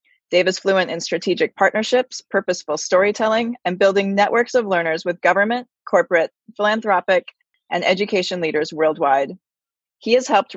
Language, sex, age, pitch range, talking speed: English, female, 30-49, 180-225 Hz, 135 wpm